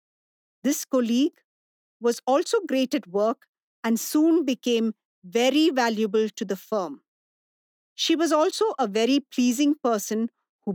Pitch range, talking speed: 225-305 Hz, 130 wpm